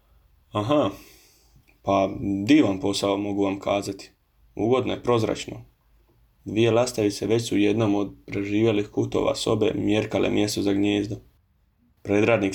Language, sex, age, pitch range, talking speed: Croatian, male, 20-39, 100-115 Hz, 120 wpm